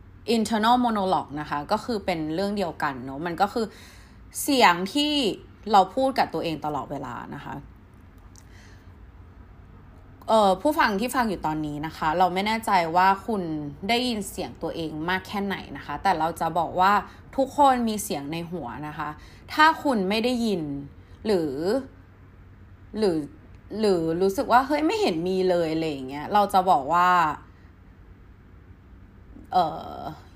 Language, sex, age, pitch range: Thai, female, 20-39, 140-210 Hz